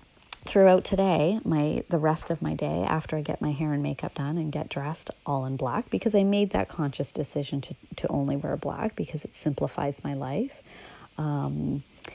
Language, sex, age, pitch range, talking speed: English, female, 30-49, 140-175 Hz, 195 wpm